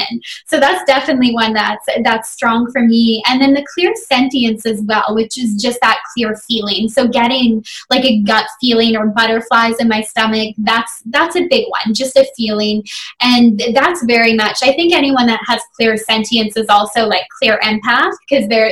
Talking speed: 190 wpm